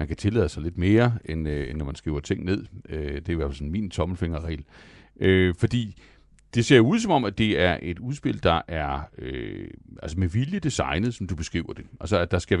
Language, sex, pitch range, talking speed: Danish, male, 80-110 Hz, 220 wpm